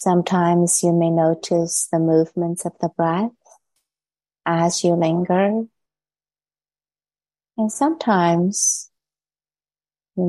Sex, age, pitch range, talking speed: female, 30-49, 170-205 Hz, 85 wpm